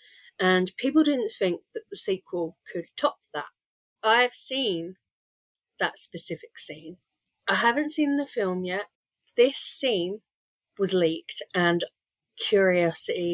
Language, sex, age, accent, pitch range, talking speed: English, female, 30-49, British, 180-295 Hz, 120 wpm